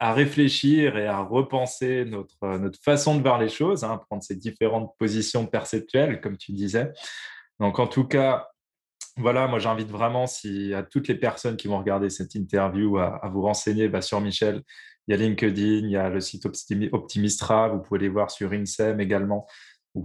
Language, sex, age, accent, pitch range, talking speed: French, male, 20-39, French, 100-125 Hz, 190 wpm